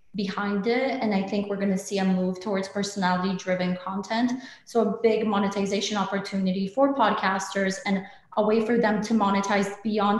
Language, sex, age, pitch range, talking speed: English, female, 20-39, 190-215 Hz, 170 wpm